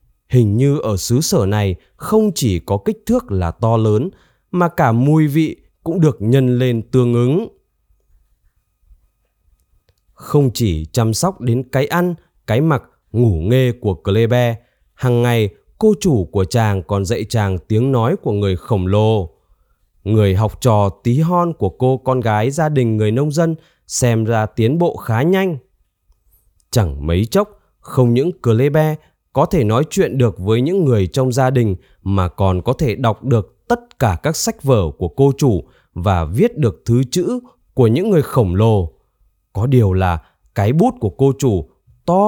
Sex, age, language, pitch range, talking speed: male, 20-39, Vietnamese, 95-140 Hz, 175 wpm